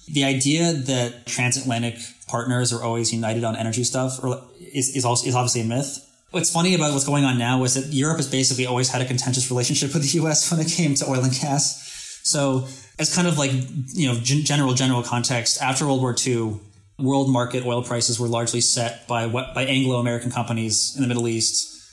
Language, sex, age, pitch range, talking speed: English, male, 20-39, 120-135 Hz, 205 wpm